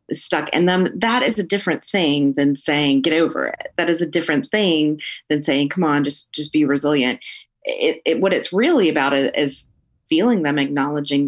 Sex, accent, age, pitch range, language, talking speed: female, American, 30-49, 145-180 Hz, English, 195 wpm